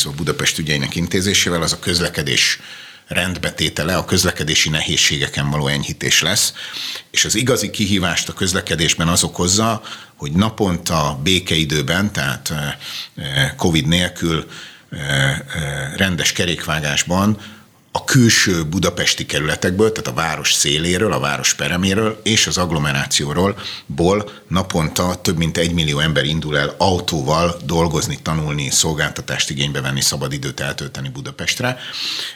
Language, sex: Hungarian, male